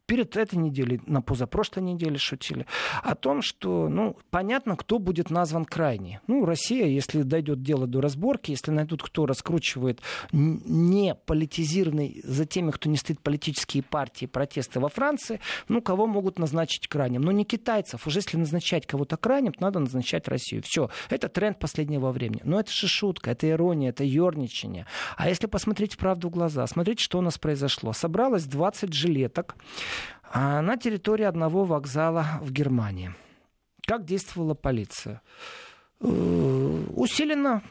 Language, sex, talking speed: Russian, male, 145 wpm